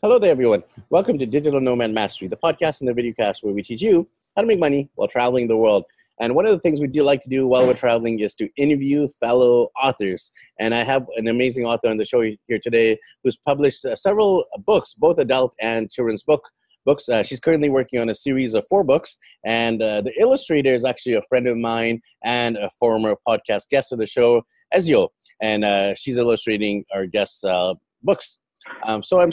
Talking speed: 215 wpm